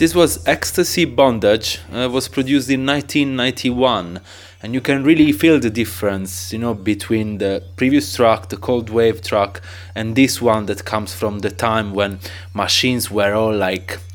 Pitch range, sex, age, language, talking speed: 95-125 Hz, male, 20-39, English, 165 wpm